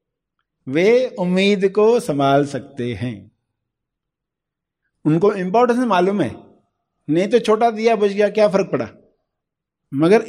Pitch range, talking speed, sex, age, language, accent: 140-205 Hz, 115 wpm, male, 50-69, Hindi, native